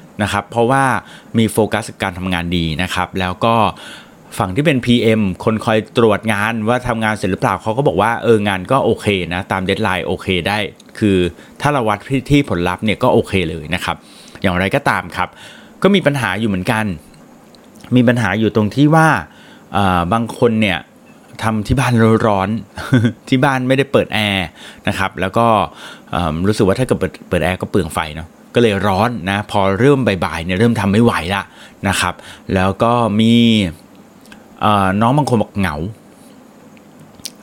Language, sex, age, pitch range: Thai, male, 30-49, 95-120 Hz